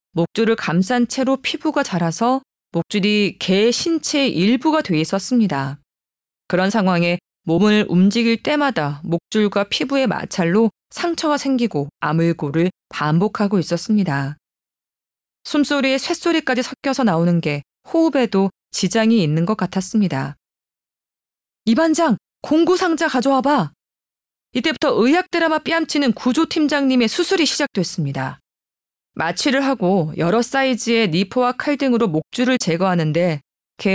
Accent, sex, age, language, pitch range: native, female, 20-39, Korean, 175-275 Hz